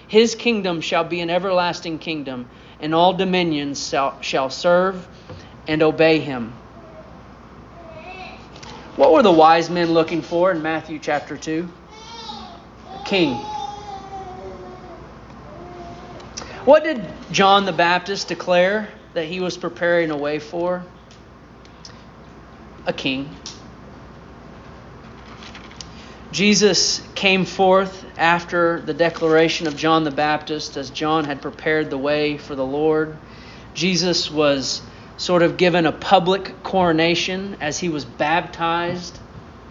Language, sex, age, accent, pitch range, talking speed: English, male, 40-59, American, 155-175 Hz, 115 wpm